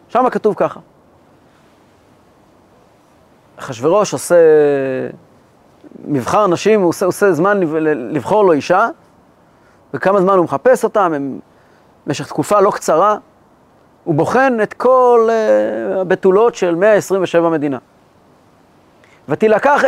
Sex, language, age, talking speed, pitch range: male, Hebrew, 40-59, 95 wpm, 170-235 Hz